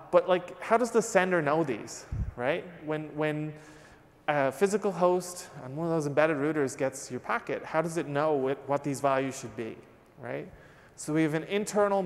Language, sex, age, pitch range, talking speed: English, male, 20-39, 130-170 Hz, 190 wpm